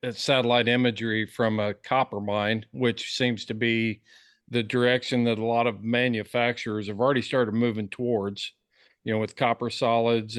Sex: male